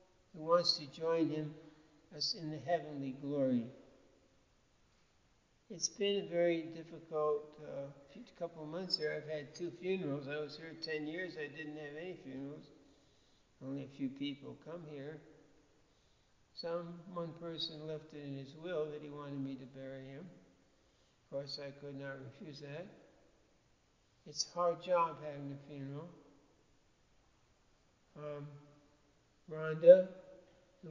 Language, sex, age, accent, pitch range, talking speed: English, male, 60-79, American, 145-185 Hz, 140 wpm